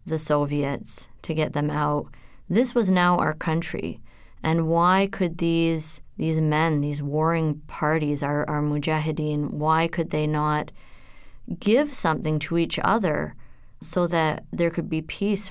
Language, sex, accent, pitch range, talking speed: English, female, American, 150-165 Hz, 145 wpm